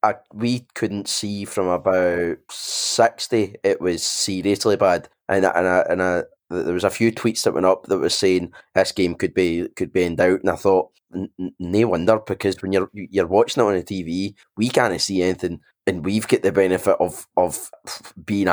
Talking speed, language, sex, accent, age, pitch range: 200 wpm, English, male, British, 20-39, 95-125 Hz